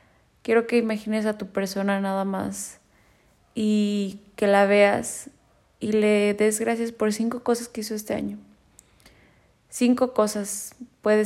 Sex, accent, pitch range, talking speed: female, Mexican, 185-210 Hz, 140 wpm